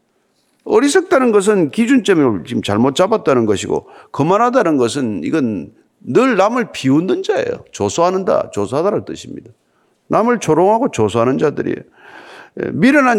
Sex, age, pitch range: male, 50-69, 150-225 Hz